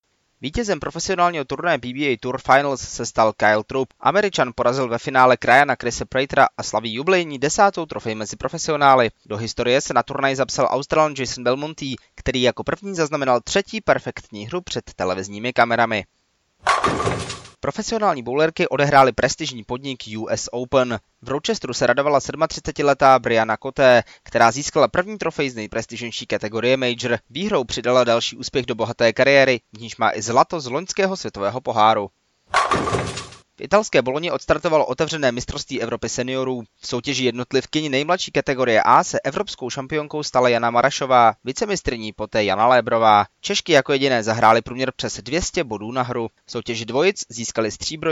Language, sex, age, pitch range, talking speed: Czech, male, 20-39, 115-150 Hz, 150 wpm